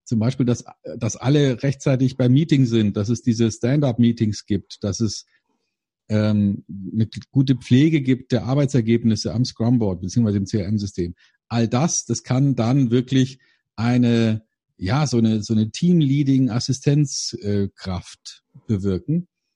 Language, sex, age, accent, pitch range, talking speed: German, male, 50-69, German, 110-135 Hz, 130 wpm